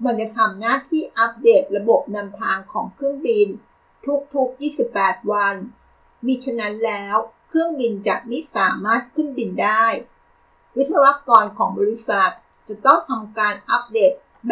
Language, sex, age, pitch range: Thai, female, 60-79, 205-270 Hz